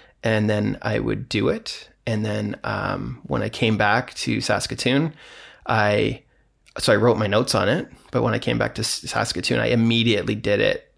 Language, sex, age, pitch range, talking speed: English, male, 20-39, 110-125 Hz, 185 wpm